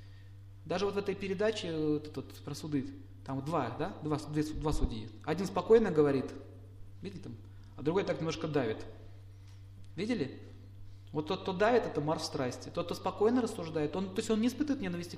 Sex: male